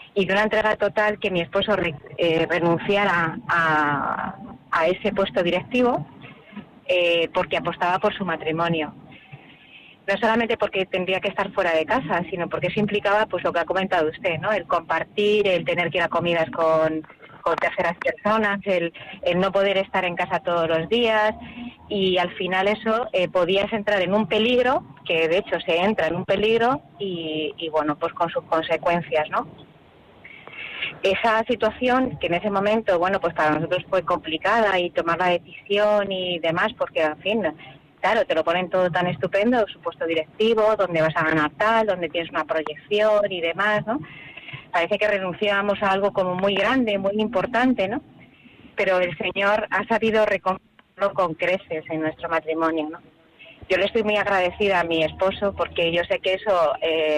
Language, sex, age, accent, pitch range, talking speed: Spanish, female, 20-39, Spanish, 170-210 Hz, 180 wpm